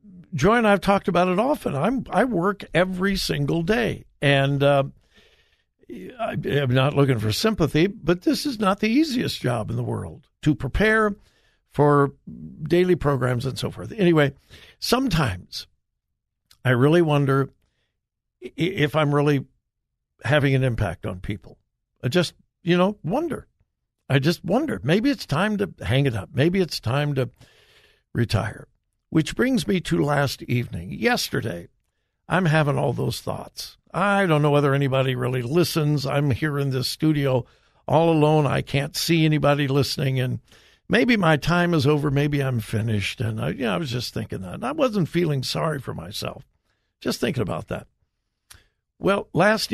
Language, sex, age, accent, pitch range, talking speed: English, male, 60-79, American, 130-180 Hz, 155 wpm